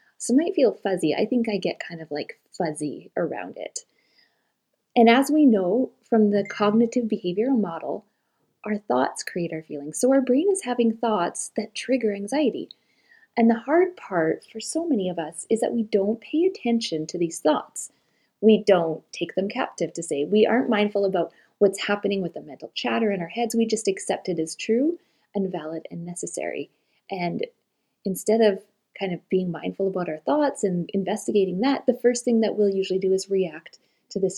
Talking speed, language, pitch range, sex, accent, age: 190 wpm, English, 185-235 Hz, female, American, 30-49